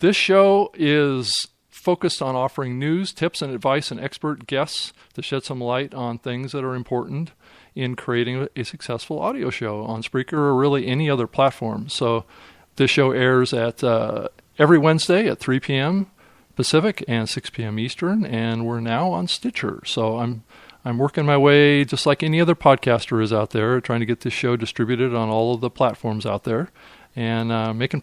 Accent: American